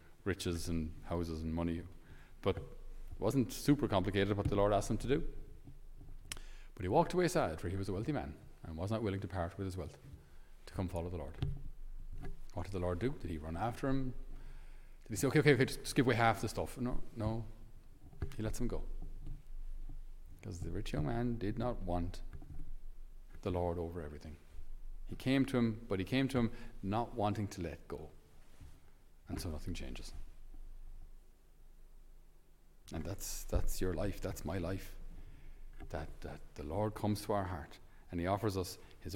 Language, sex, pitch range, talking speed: English, male, 85-110 Hz, 185 wpm